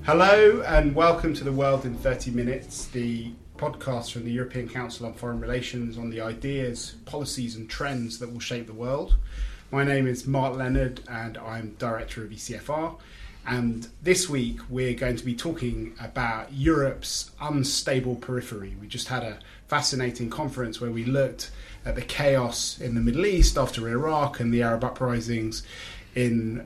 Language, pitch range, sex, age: English, 115-135 Hz, male, 30-49